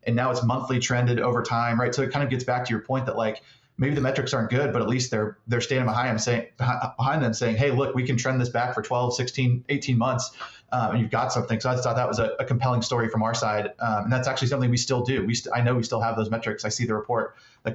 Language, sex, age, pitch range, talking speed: English, male, 30-49, 115-130 Hz, 295 wpm